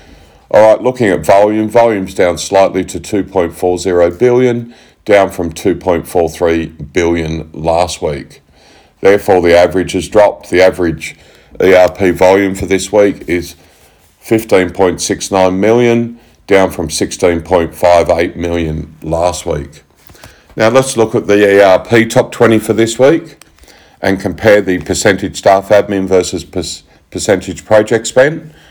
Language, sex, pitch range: English, male, 85-100 Hz